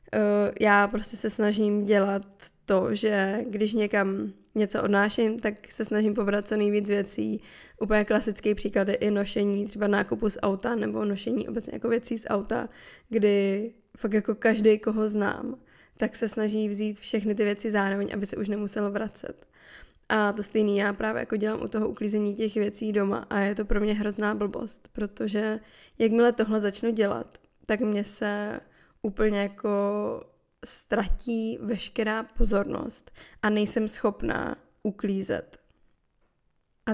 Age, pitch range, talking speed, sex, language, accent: 20-39, 205-225 Hz, 150 wpm, female, Czech, native